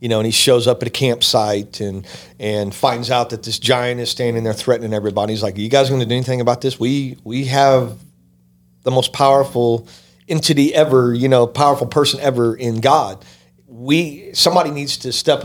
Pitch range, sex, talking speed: 110-140 Hz, male, 200 wpm